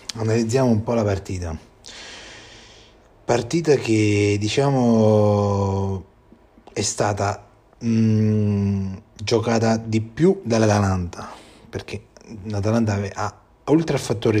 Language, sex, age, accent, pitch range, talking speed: Italian, male, 30-49, native, 100-115 Hz, 90 wpm